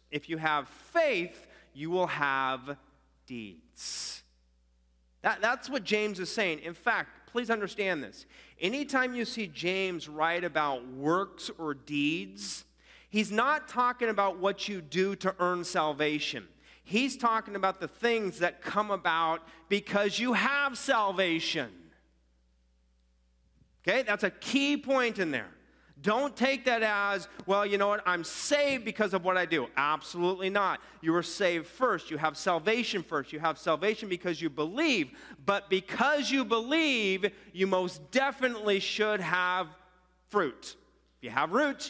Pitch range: 160-220 Hz